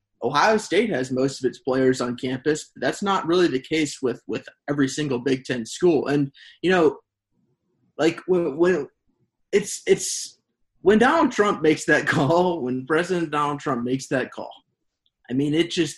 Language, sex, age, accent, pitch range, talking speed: English, male, 20-39, American, 130-150 Hz, 165 wpm